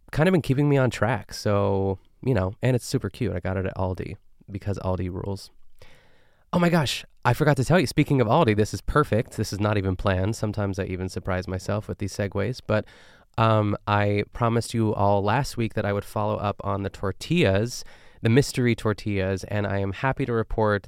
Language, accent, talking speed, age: English, American, 215 wpm, 20-39